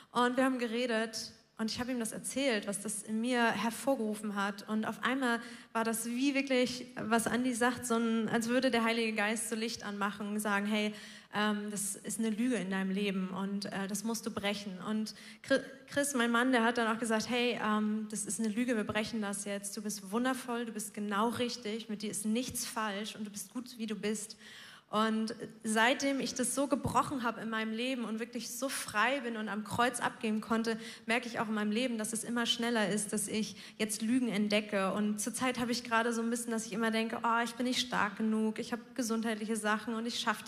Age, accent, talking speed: 20-39, German, 225 wpm